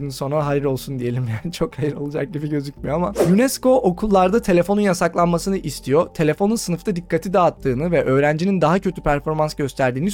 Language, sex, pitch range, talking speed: Turkish, male, 145-195 Hz, 155 wpm